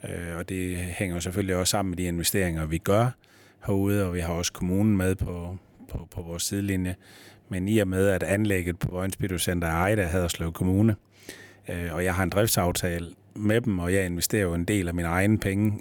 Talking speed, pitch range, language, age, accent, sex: 210 wpm, 90-105 Hz, Danish, 30-49, native, male